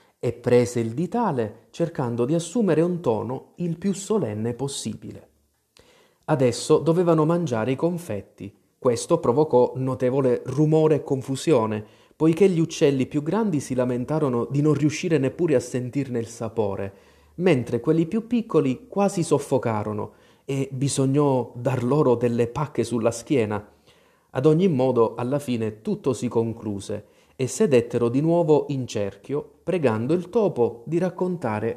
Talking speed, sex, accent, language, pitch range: 135 wpm, male, native, Italian, 115-165 Hz